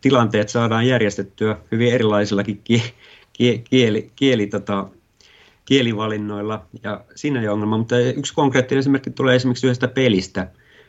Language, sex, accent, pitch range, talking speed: Finnish, male, native, 105-130 Hz, 115 wpm